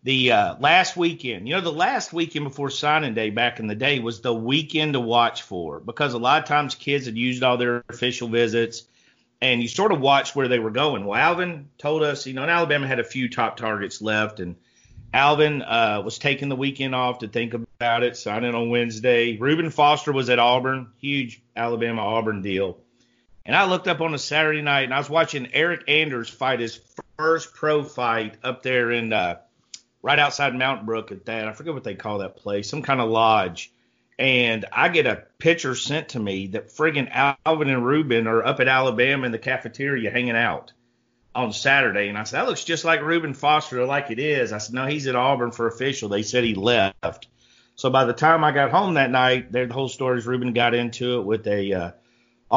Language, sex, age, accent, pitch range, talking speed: English, male, 40-59, American, 115-140 Hz, 215 wpm